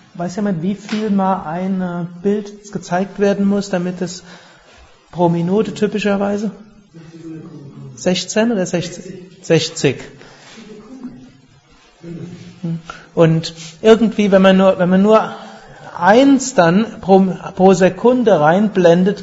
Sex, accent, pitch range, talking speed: male, German, 155-195 Hz, 95 wpm